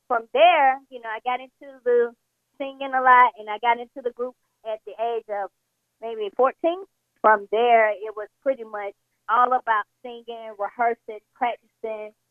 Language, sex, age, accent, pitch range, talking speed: English, female, 20-39, American, 230-275 Hz, 165 wpm